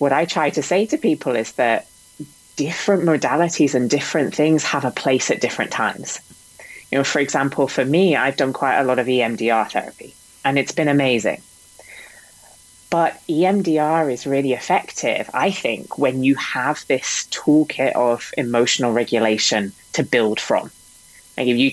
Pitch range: 120-145 Hz